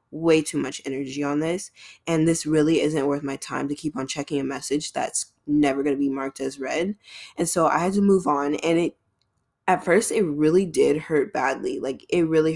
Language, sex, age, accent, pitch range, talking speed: English, female, 10-29, American, 140-165 Hz, 220 wpm